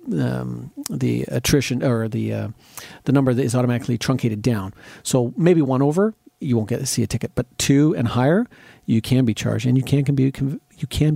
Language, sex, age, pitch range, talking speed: English, male, 40-59, 115-140 Hz, 215 wpm